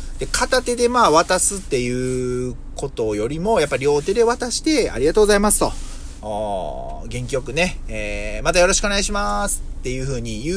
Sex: male